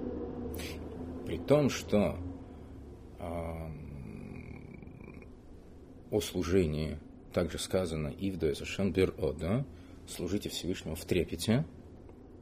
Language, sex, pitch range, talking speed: Russian, male, 80-105 Hz, 70 wpm